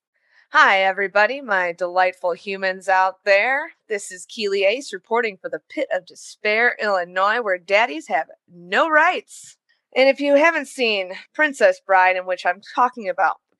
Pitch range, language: 185-280 Hz, English